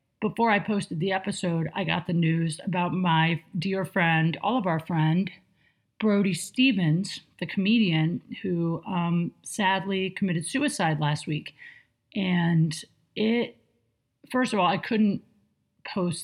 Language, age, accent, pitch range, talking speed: English, 40-59, American, 155-205 Hz, 135 wpm